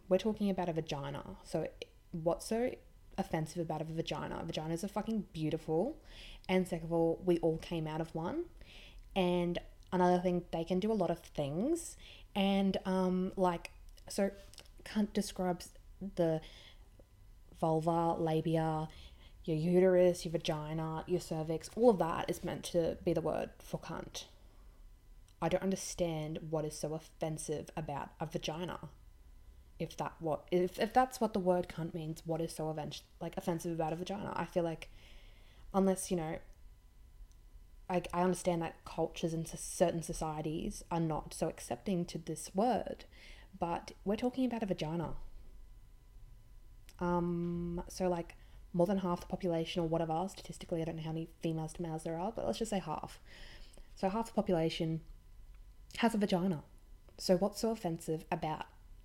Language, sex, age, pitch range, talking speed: English, female, 20-39, 155-185 Hz, 160 wpm